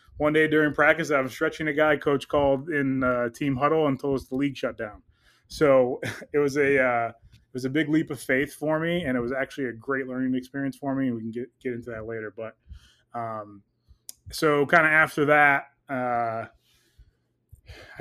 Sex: male